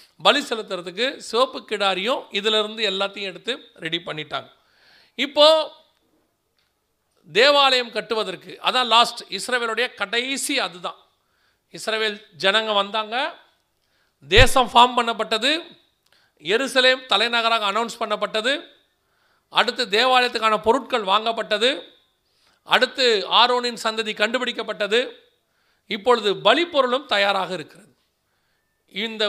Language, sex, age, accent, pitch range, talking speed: Tamil, male, 40-59, native, 185-240 Hz, 85 wpm